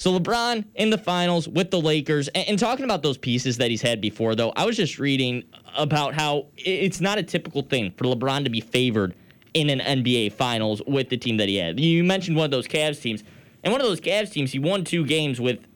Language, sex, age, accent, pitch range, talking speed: English, male, 10-29, American, 120-155 Hz, 235 wpm